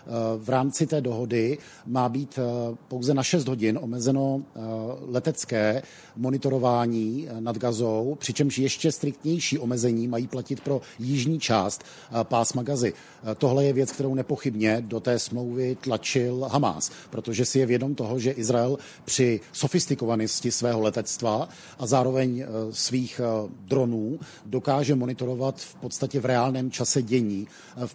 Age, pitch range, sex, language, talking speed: 50-69, 120-140 Hz, male, Czech, 130 wpm